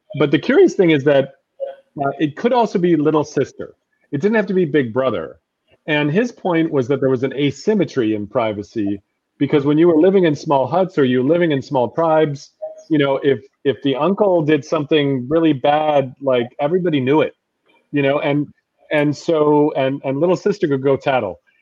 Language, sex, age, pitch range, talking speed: English, male, 30-49, 125-155 Hz, 200 wpm